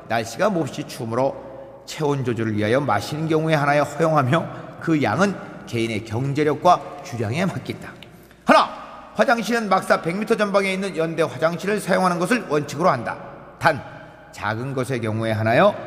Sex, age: male, 40-59